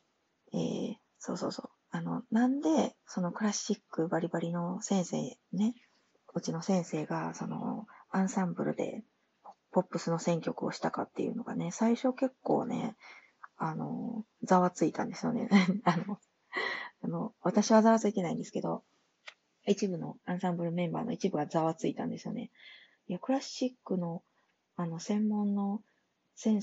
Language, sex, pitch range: Japanese, female, 175-220 Hz